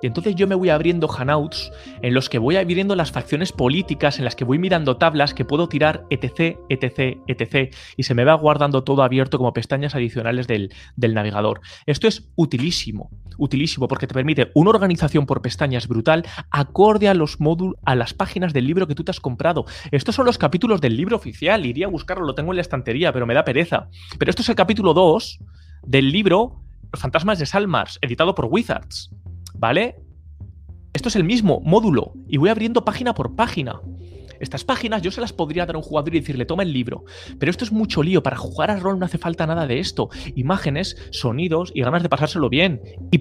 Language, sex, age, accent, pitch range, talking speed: Spanish, male, 30-49, Spanish, 120-175 Hz, 205 wpm